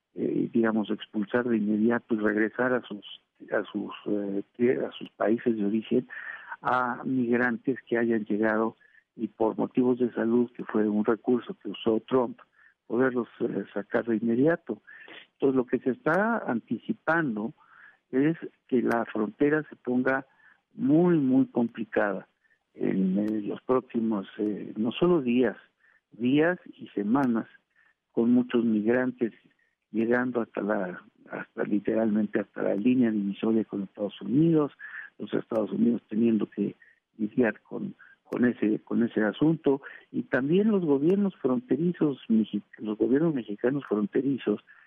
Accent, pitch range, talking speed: Mexican, 110-130 Hz, 135 wpm